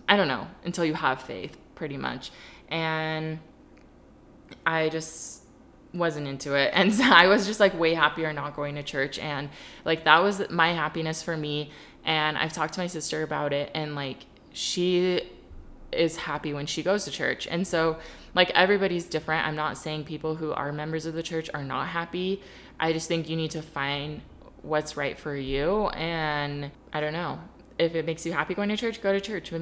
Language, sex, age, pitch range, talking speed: English, female, 20-39, 150-175 Hz, 200 wpm